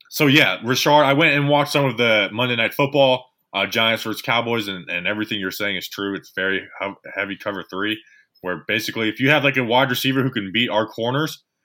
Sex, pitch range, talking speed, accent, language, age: male, 105-145 Hz, 225 wpm, American, English, 20-39